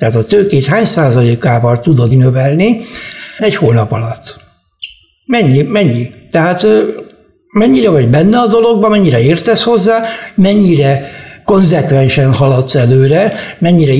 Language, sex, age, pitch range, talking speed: Hungarian, male, 60-79, 130-190 Hz, 110 wpm